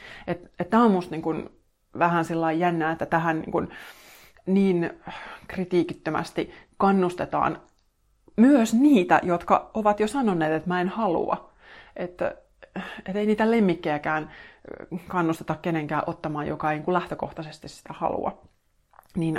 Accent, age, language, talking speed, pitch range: native, 30-49, Finnish, 120 wpm, 150-190 Hz